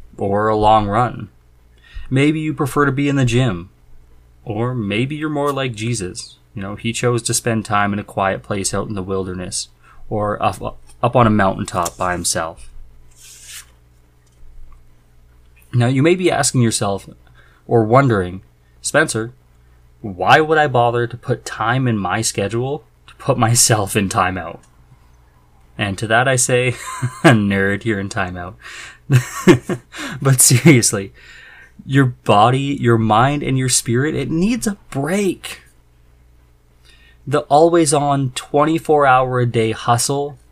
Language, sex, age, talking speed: English, male, 20-39, 135 wpm